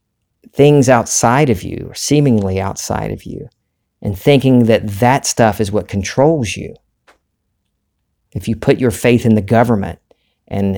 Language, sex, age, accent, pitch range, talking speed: English, male, 40-59, American, 100-115 Hz, 150 wpm